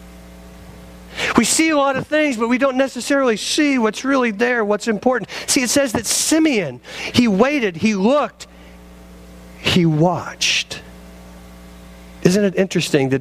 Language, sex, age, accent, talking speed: English, male, 50-69, American, 140 wpm